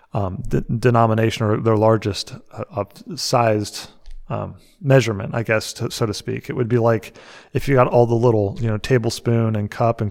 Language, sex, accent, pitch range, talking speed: English, male, American, 110-125 Hz, 195 wpm